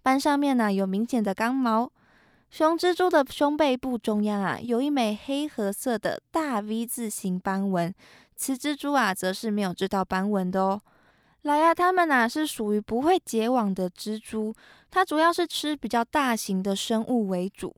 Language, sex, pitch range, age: Chinese, female, 210-275 Hz, 20-39